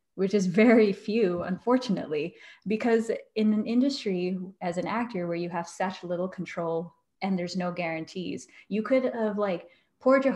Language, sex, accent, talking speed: English, female, American, 160 wpm